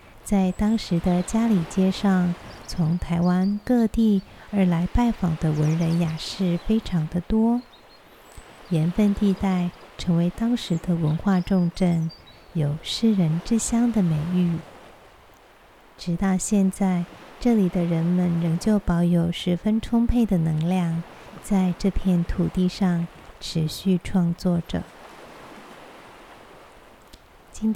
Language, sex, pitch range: Chinese, female, 170-205 Hz